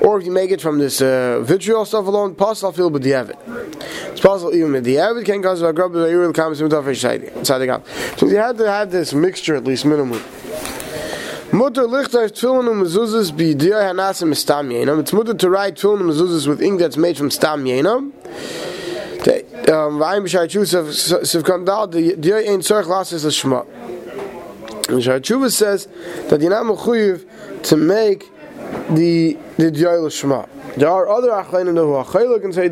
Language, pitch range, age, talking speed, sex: English, 155-215 Hz, 20-39, 115 wpm, male